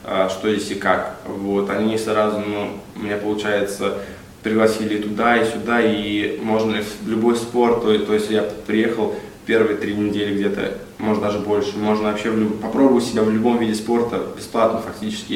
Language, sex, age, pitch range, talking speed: Russian, male, 20-39, 105-110 Hz, 160 wpm